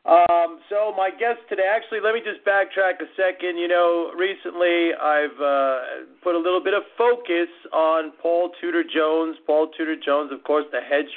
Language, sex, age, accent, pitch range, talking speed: English, male, 40-59, American, 140-175 Hz, 185 wpm